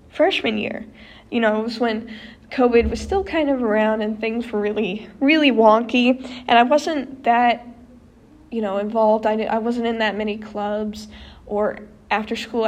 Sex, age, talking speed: female, 10-29, 165 wpm